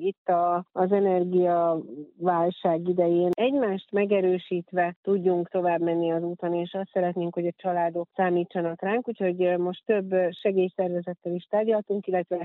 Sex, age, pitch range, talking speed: female, 40-59, 175-195 Hz, 140 wpm